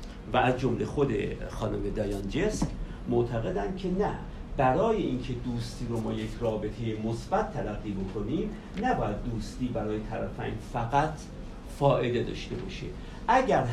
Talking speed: 120 wpm